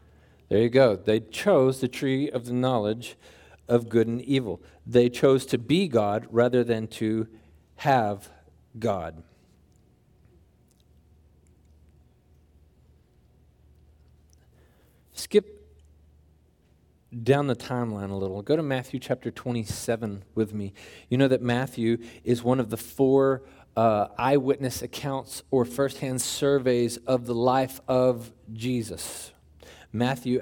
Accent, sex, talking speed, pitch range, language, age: American, male, 115 wpm, 110-135 Hz, English, 40-59